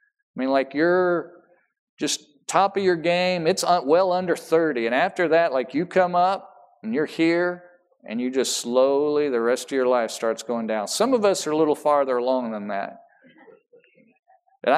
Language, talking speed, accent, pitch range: English, 185 wpm, American, 130-210 Hz